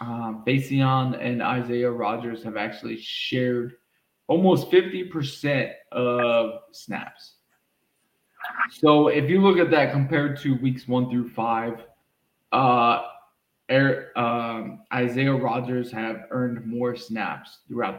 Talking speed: 115 wpm